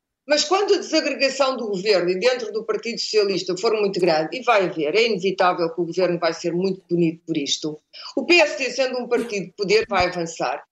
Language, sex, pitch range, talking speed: Portuguese, female, 200-300 Hz, 205 wpm